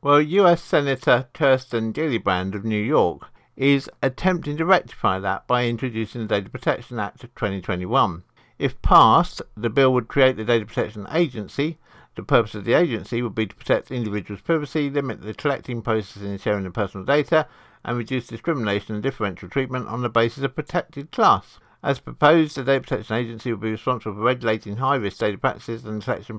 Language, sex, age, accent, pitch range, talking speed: English, male, 50-69, British, 105-135 Hz, 180 wpm